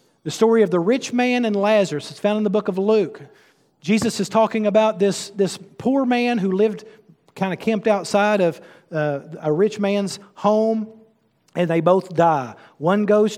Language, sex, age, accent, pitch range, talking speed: English, male, 40-59, American, 180-225 Hz, 185 wpm